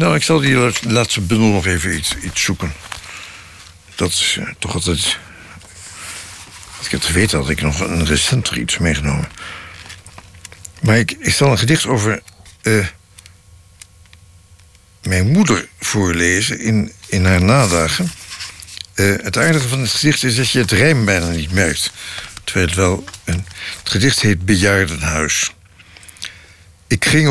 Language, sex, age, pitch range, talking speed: Dutch, male, 60-79, 90-115 Hz, 140 wpm